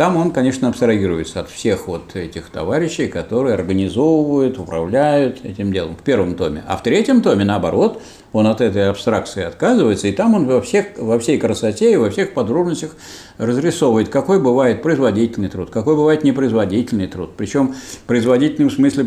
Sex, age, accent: male, 60-79, native